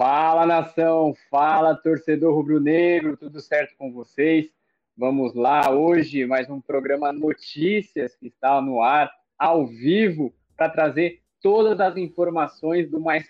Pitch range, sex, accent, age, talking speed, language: 130-165 Hz, male, Brazilian, 20-39, 130 wpm, Portuguese